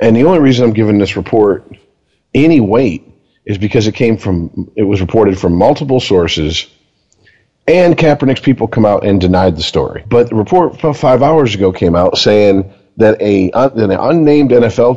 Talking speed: 185 wpm